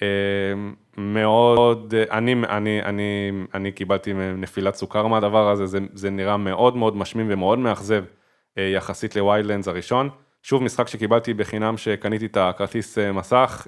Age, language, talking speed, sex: 20-39, Hebrew, 130 wpm, male